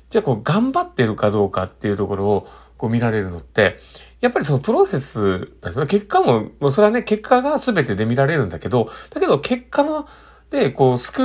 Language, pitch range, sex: Japanese, 105-155 Hz, male